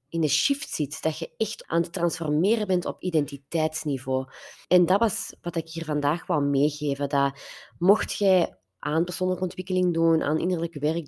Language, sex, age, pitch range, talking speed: Dutch, female, 20-39, 145-180 Hz, 170 wpm